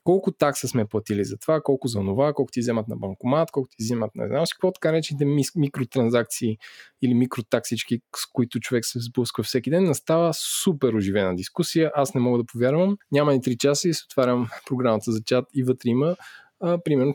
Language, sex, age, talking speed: English, male, 20-39, 190 wpm